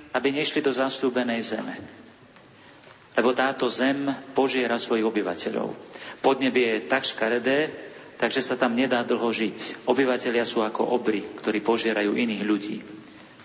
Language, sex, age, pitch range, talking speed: Slovak, male, 40-59, 110-130 Hz, 130 wpm